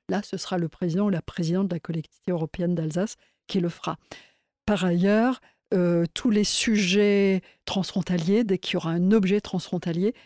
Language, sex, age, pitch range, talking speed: French, female, 50-69, 170-200 Hz, 175 wpm